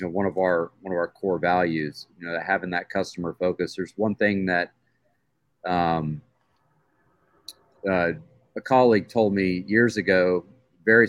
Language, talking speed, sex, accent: English, 145 wpm, male, American